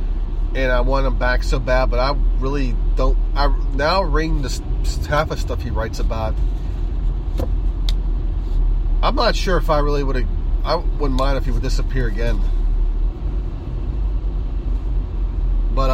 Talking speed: 145 wpm